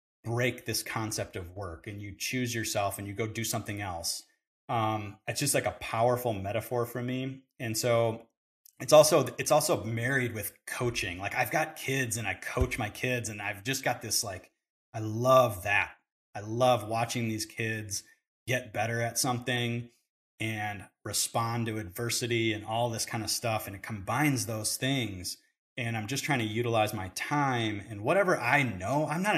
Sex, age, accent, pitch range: male, 30-49, American, 105-125 Hz